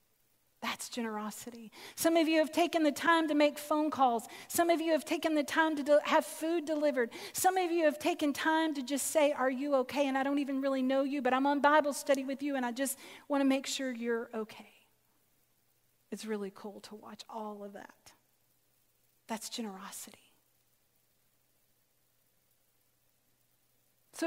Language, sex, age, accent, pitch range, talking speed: English, female, 40-59, American, 250-315 Hz, 175 wpm